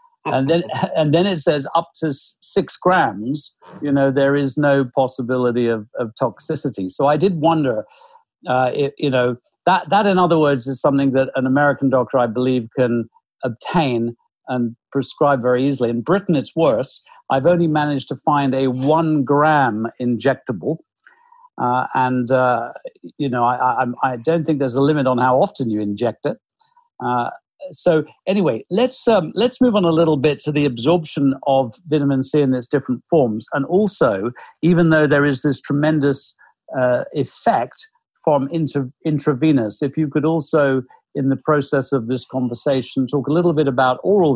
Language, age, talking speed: English, 50-69, 175 wpm